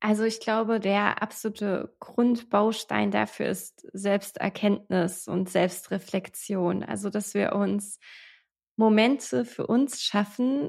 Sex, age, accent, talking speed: female, 20-39, German, 105 wpm